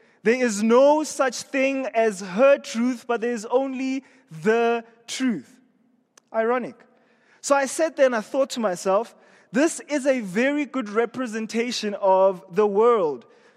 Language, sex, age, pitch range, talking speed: English, male, 20-39, 210-255 Hz, 145 wpm